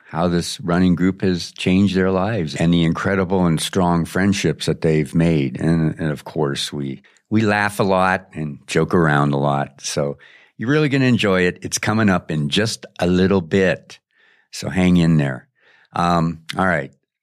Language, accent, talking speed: English, American, 180 wpm